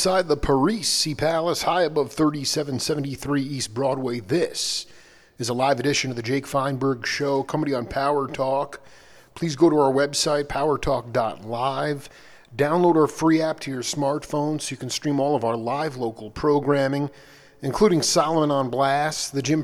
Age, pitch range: 40-59, 125-145 Hz